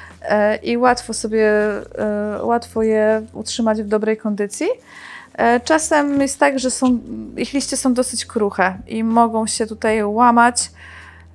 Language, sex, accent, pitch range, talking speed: Polish, female, native, 215-250 Hz, 125 wpm